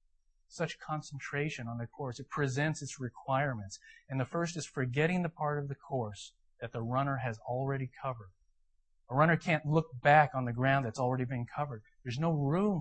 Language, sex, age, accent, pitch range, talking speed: English, male, 40-59, American, 120-155 Hz, 185 wpm